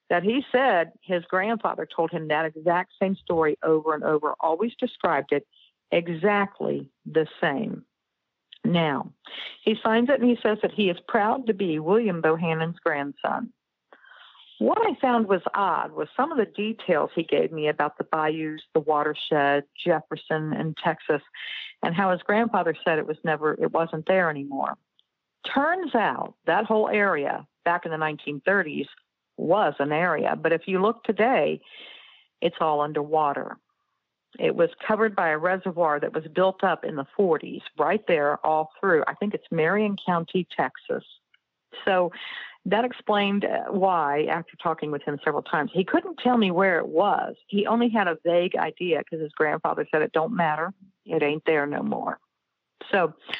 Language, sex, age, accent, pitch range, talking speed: English, female, 50-69, American, 155-215 Hz, 165 wpm